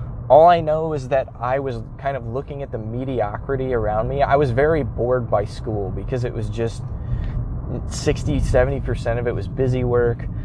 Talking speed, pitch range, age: 185 wpm, 105-125 Hz, 20-39